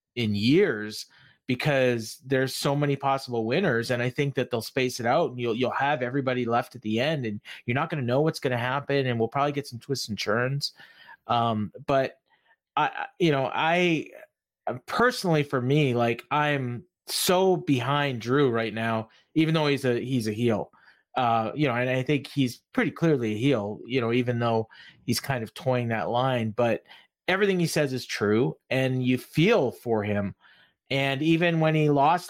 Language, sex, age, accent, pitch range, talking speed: English, male, 30-49, American, 120-150 Hz, 190 wpm